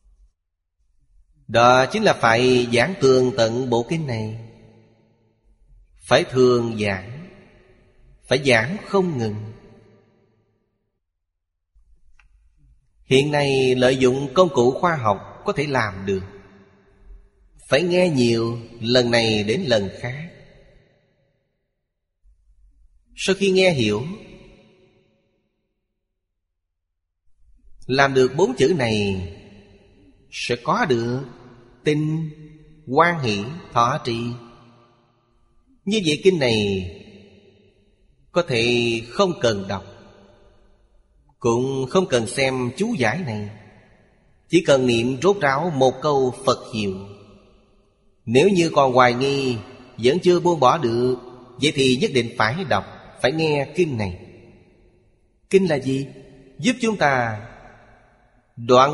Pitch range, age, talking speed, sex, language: 105-140 Hz, 30-49, 110 wpm, male, Vietnamese